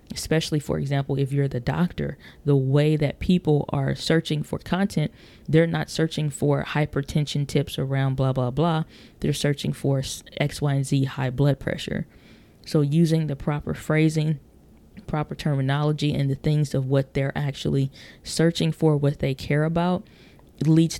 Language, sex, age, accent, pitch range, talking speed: English, female, 20-39, American, 135-160 Hz, 160 wpm